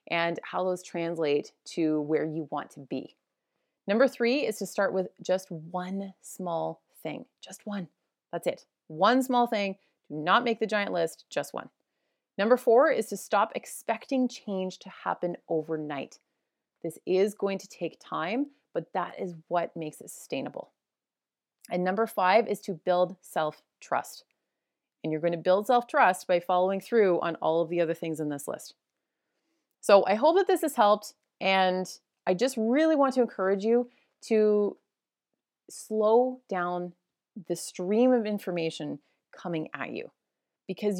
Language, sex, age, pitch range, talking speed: English, female, 30-49, 170-220 Hz, 160 wpm